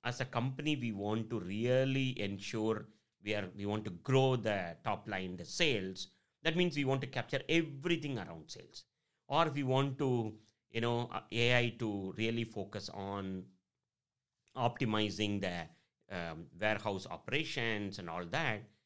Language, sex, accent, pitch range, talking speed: English, male, Indian, 105-135 Hz, 155 wpm